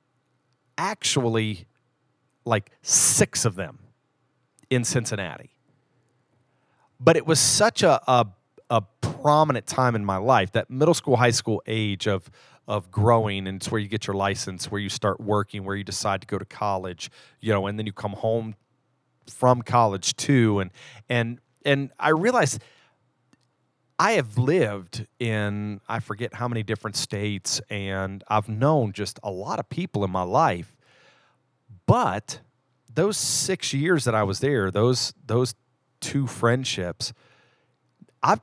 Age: 40-59